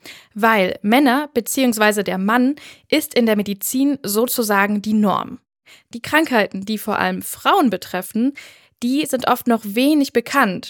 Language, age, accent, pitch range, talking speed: German, 10-29, German, 210-260 Hz, 140 wpm